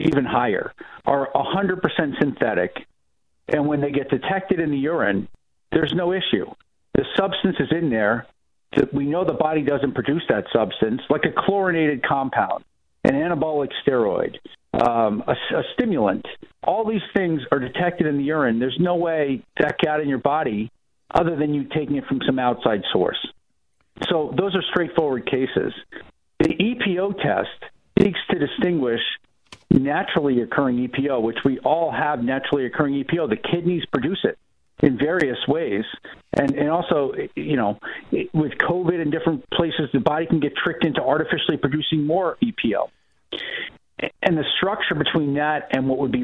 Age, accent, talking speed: 50-69, American, 160 wpm